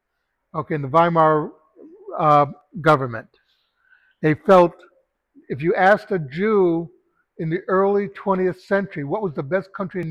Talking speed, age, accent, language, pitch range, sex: 140 wpm, 60-79, American, English, 155-190 Hz, male